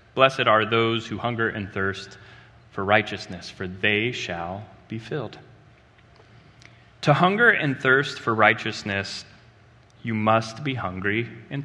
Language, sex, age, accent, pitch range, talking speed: English, male, 30-49, American, 105-125 Hz, 130 wpm